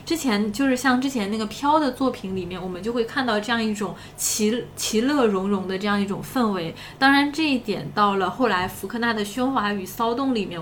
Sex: female